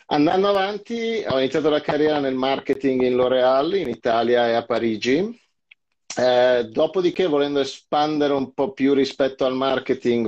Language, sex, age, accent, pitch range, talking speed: Italian, male, 30-49, native, 115-130 Hz, 145 wpm